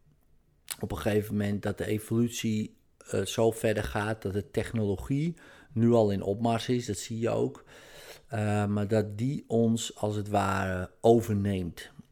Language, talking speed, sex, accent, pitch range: Dutch, 160 wpm, male, Dutch, 100-115 Hz